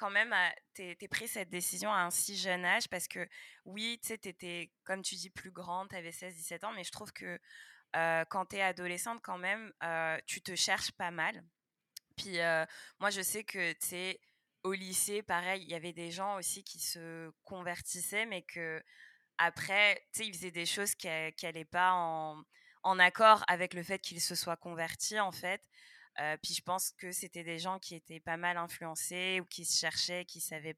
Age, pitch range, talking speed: 20-39, 165-190 Hz, 205 wpm